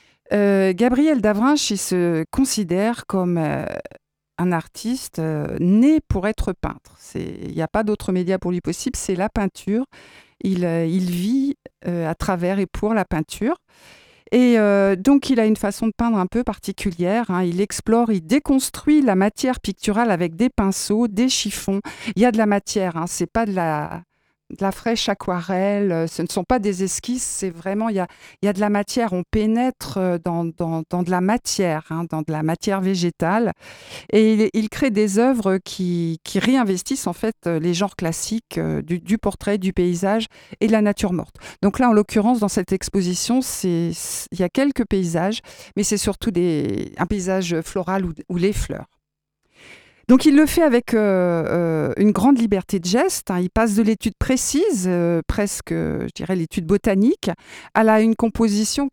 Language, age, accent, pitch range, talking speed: French, 50-69, French, 180-225 Hz, 190 wpm